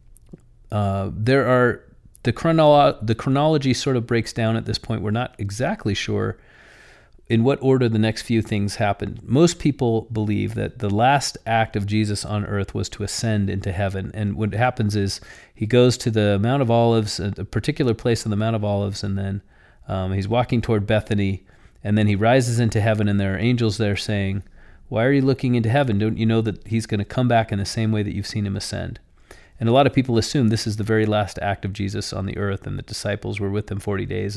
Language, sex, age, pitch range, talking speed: English, male, 40-59, 100-120 Hz, 225 wpm